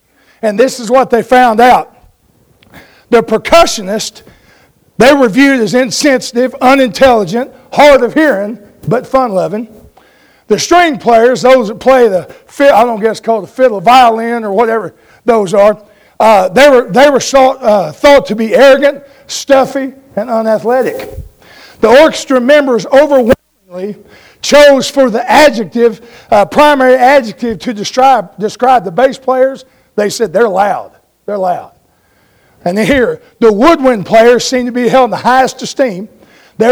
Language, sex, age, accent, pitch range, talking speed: English, male, 50-69, American, 220-275 Hz, 150 wpm